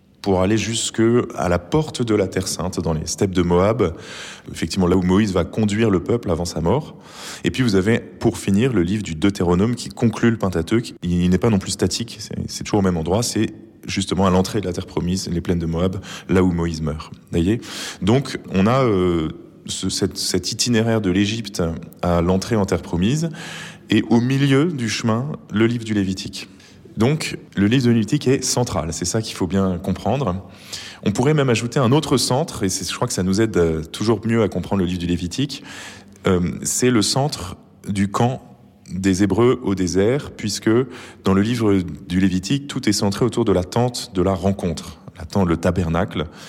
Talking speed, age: 205 wpm, 20-39